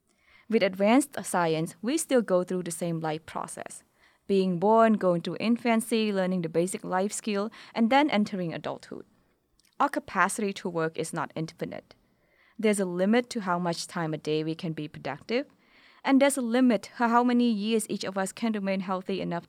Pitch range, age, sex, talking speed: 175-230 Hz, 20-39, female, 185 wpm